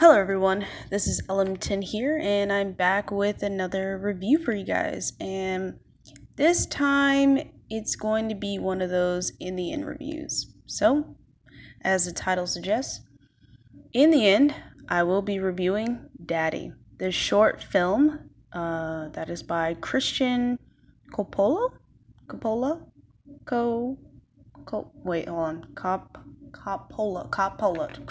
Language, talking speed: English, 130 wpm